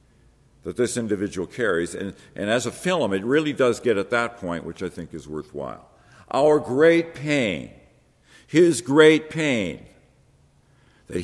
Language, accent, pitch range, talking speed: English, American, 110-150 Hz, 150 wpm